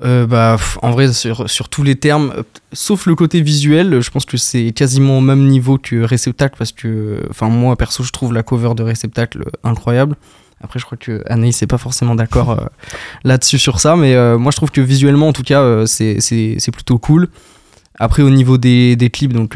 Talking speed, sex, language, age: 220 wpm, male, French, 20-39